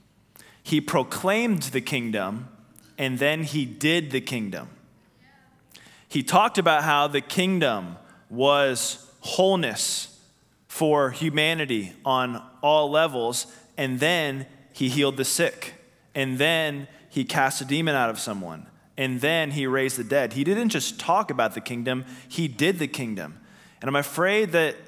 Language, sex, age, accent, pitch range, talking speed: English, male, 20-39, American, 110-150 Hz, 140 wpm